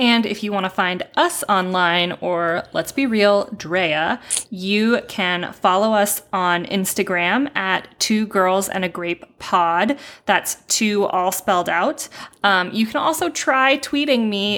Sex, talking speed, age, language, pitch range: female, 155 wpm, 20-39, English, 195-250 Hz